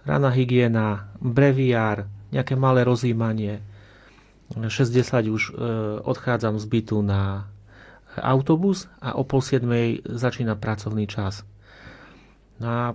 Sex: male